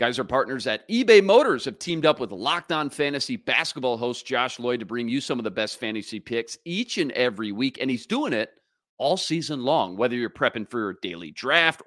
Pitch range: 115-155 Hz